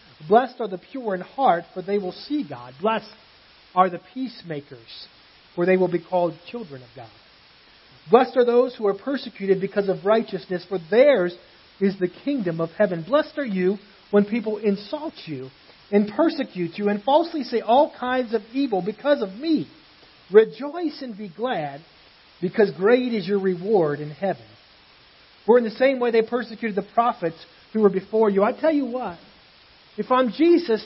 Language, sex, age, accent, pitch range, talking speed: English, male, 40-59, American, 195-255 Hz, 175 wpm